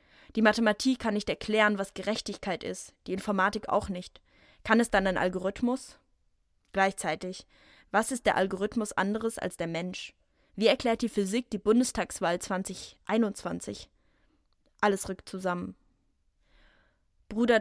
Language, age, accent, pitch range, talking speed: German, 20-39, German, 185-215 Hz, 125 wpm